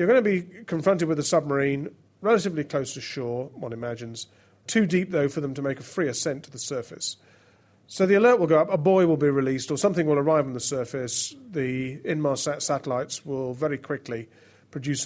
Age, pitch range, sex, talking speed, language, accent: 40-59, 125-155 Hz, male, 205 wpm, English, British